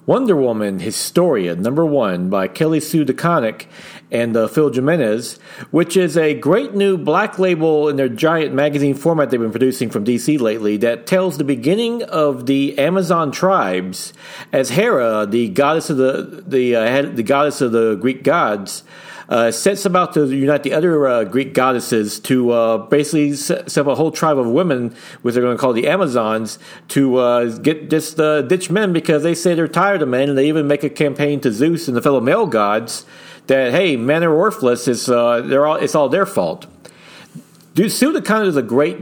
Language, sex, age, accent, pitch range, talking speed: English, male, 50-69, American, 130-185 Hz, 195 wpm